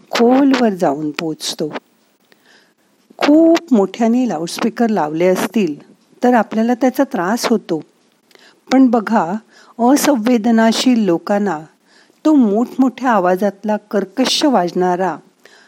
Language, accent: Marathi, native